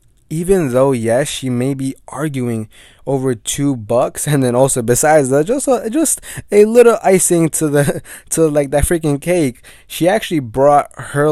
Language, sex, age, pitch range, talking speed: English, male, 20-39, 125-160 Hz, 165 wpm